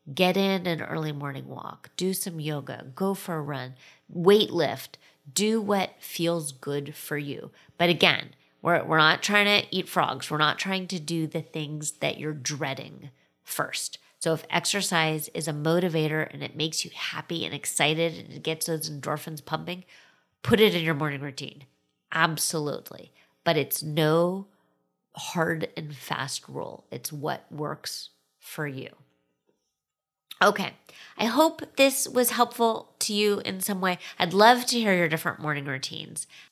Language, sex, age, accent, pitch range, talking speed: English, female, 30-49, American, 155-185 Hz, 160 wpm